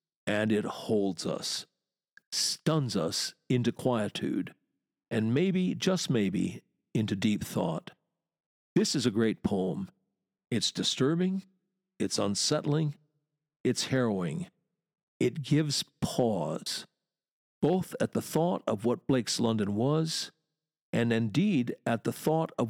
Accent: American